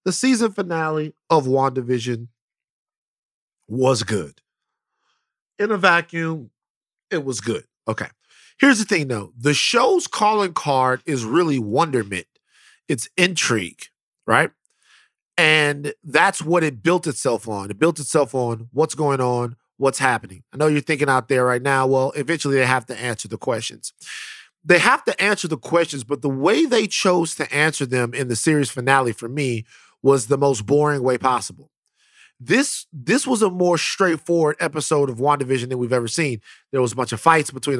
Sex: male